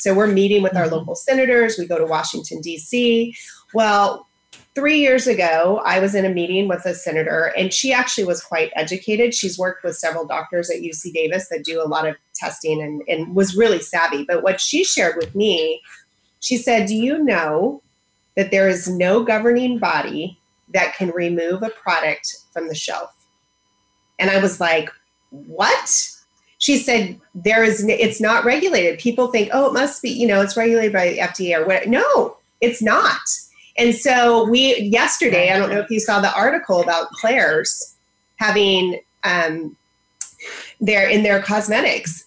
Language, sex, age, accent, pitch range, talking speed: English, female, 30-49, American, 175-230 Hz, 175 wpm